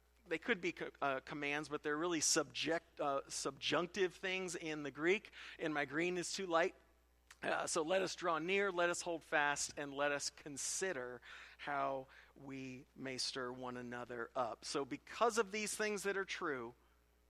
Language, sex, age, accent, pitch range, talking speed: English, male, 40-59, American, 130-175 Hz, 170 wpm